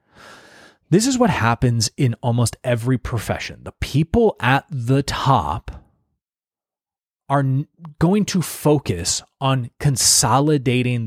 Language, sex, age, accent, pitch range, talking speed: English, male, 30-49, American, 115-165 Hz, 105 wpm